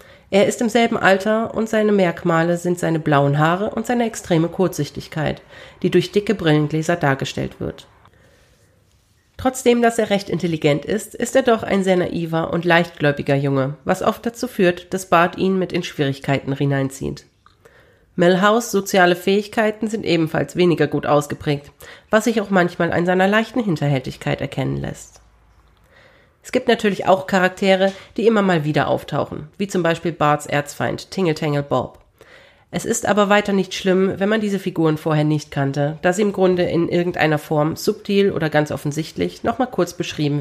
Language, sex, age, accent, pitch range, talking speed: German, female, 40-59, German, 150-200 Hz, 165 wpm